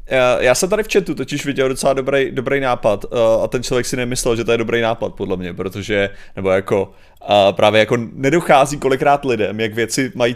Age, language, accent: 30-49, Czech, native